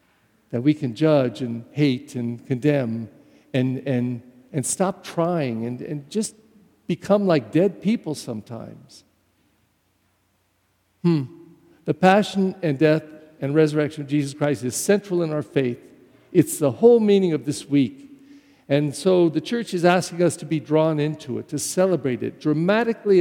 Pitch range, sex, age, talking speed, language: 135-175 Hz, male, 50-69, 155 wpm, English